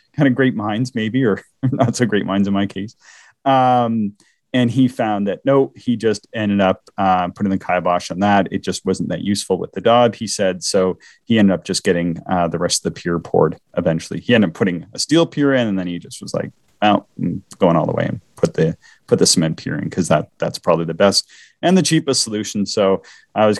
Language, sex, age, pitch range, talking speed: English, male, 30-49, 90-115 Hz, 240 wpm